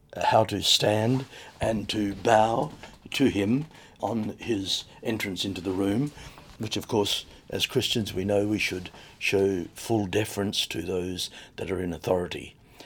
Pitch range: 95-120 Hz